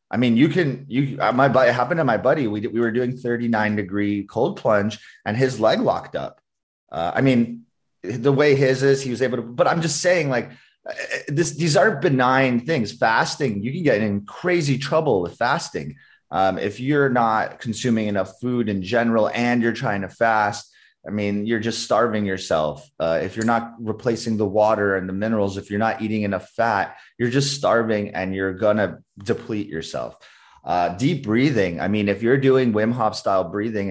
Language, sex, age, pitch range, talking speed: English, male, 30-49, 100-125 Hz, 200 wpm